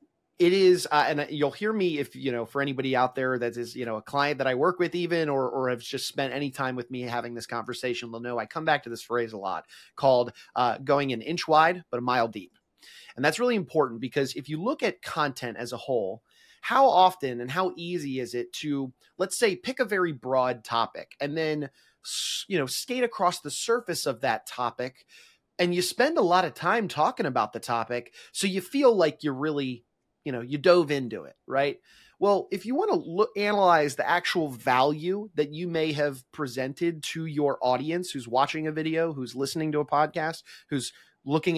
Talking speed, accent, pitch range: 215 wpm, American, 130-180 Hz